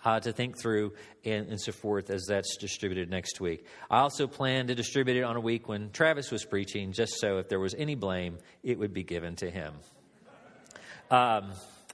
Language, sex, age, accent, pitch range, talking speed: English, male, 40-59, American, 125-160 Hz, 205 wpm